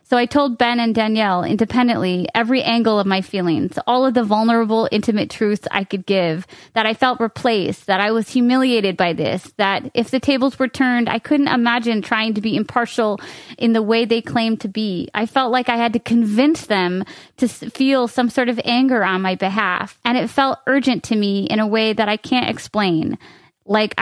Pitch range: 200-245 Hz